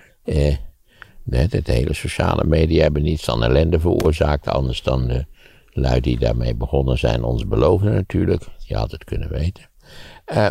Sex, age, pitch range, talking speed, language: male, 60-79, 70-100 Hz, 155 wpm, Dutch